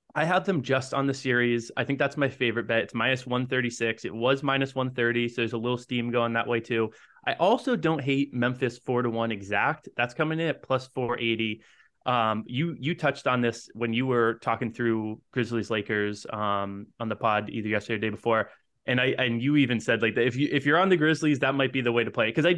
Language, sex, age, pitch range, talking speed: English, male, 20-39, 115-140 Hz, 240 wpm